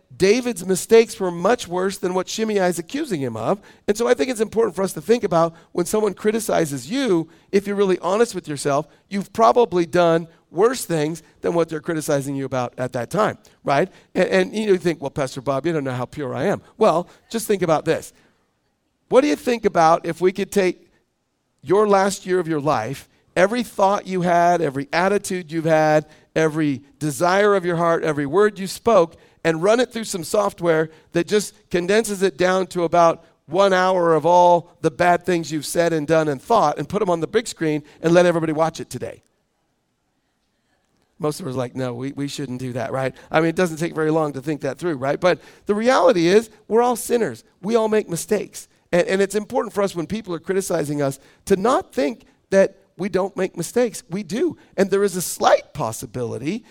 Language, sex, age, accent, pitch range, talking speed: English, male, 50-69, American, 155-200 Hz, 215 wpm